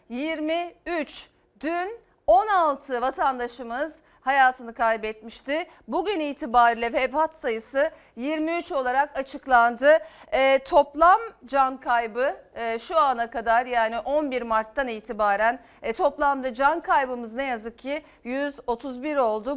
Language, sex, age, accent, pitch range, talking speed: Turkish, female, 40-59, native, 235-310 Hz, 105 wpm